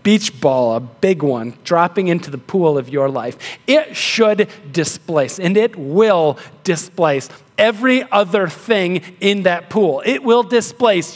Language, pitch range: English, 180-245 Hz